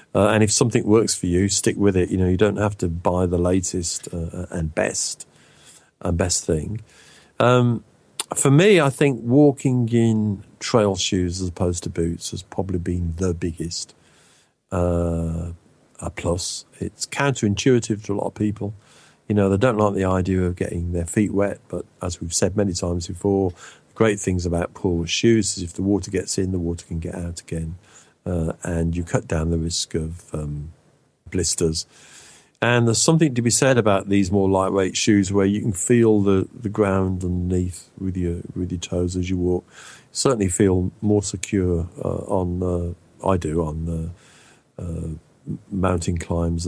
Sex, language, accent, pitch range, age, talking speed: male, English, British, 85-115 Hz, 50-69, 180 wpm